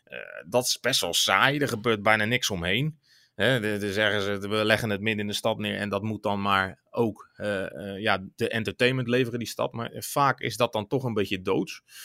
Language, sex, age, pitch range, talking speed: Dutch, male, 30-49, 105-130 Hz, 230 wpm